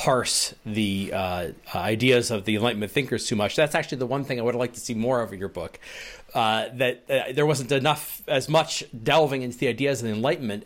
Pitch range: 120-145 Hz